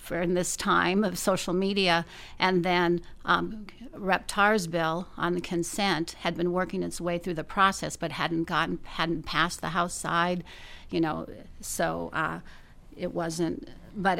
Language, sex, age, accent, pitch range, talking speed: English, female, 40-59, American, 155-180 Hz, 160 wpm